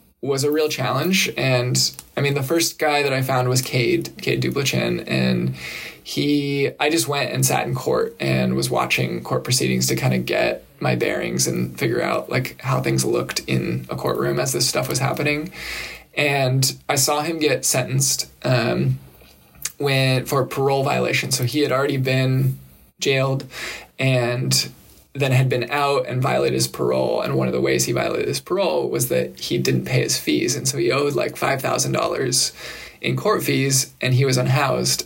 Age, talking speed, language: 20-39, 185 wpm, English